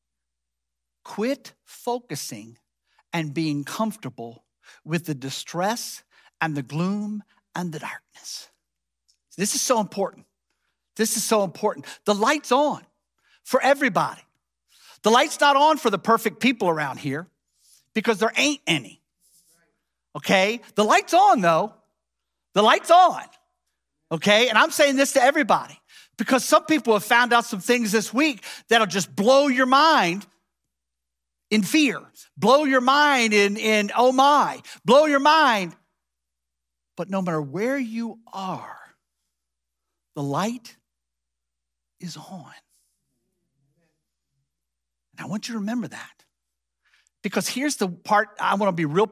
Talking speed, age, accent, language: 135 wpm, 50-69, American, English